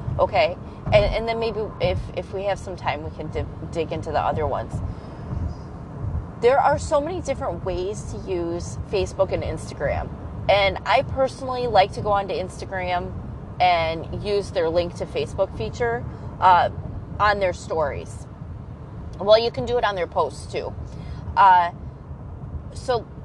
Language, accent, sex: English, American, female